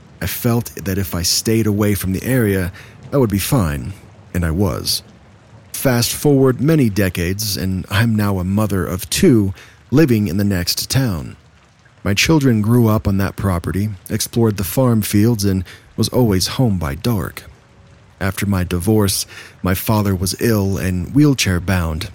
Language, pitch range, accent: English, 95-115 Hz, American